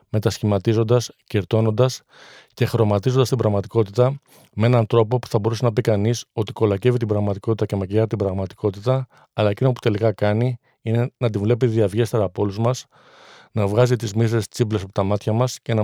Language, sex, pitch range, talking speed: Greek, male, 105-125 Hz, 175 wpm